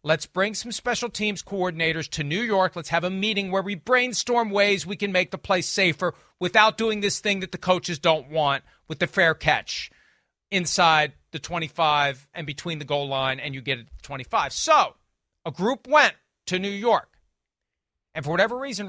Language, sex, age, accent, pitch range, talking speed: English, male, 40-59, American, 170-225 Hz, 195 wpm